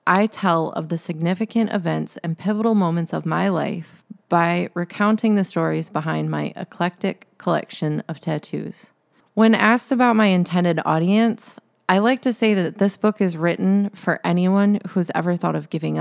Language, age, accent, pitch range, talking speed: English, 20-39, American, 160-200 Hz, 165 wpm